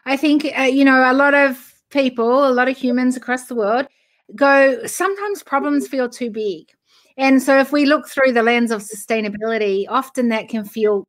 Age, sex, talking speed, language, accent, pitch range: 30-49, female, 195 wpm, English, Australian, 220-270 Hz